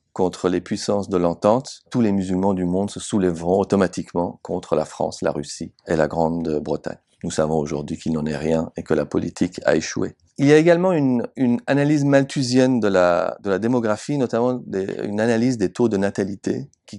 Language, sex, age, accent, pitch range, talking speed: French, male, 40-59, French, 90-115 Hz, 200 wpm